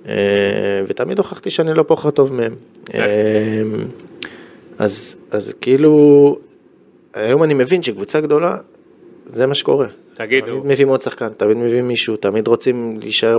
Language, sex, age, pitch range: Hebrew, male, 20-39, 105-140 Hz